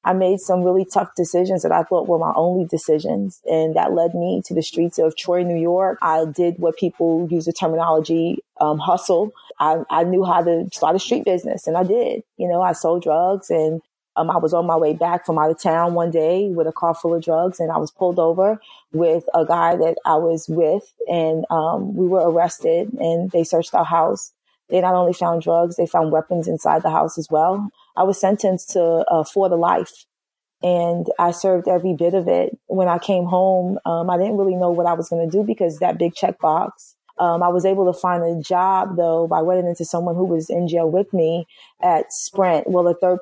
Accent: American